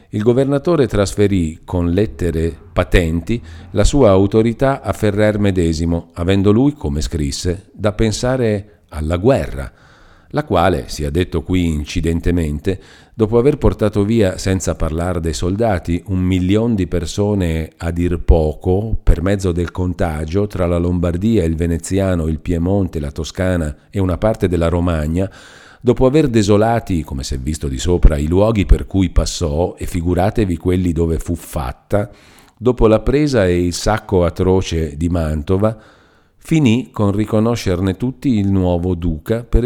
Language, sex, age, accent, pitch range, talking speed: Italian, male, 50-69, native, 85-105 Hz, 145 wpm